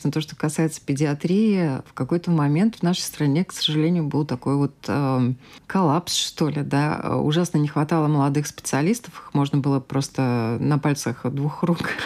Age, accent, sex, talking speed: 20-39, native, female, 165 wpm